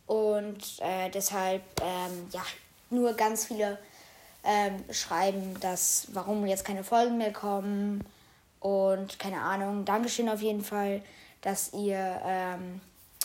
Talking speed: 120 wpm